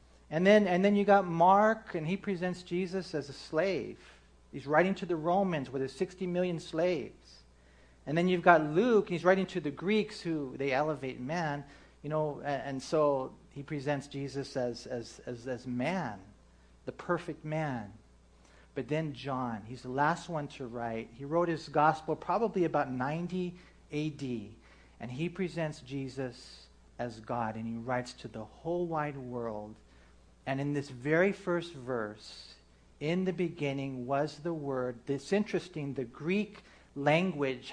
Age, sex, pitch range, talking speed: 40-59, male, 125-180 Hz, 165 wpm